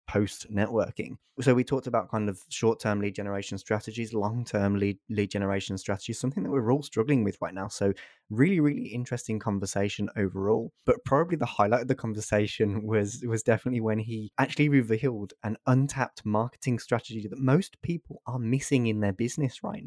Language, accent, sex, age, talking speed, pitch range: English, British, male, 20-39, 170 wpm, 105-130 Hz